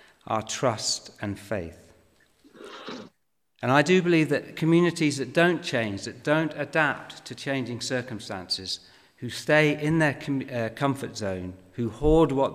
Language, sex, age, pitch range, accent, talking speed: English, male, 50-69, 110-145 Hz, British, 140 wpm